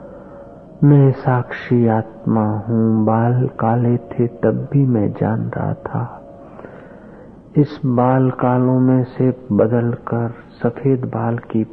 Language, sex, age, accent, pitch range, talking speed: Hindi, male, 50-69, native, 115-130 Hz, 120 wpm